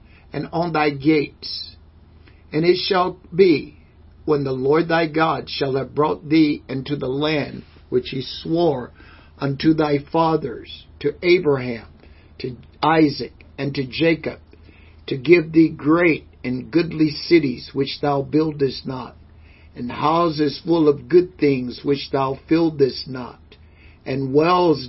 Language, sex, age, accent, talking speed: English, male, 60-79, American, 135 wpm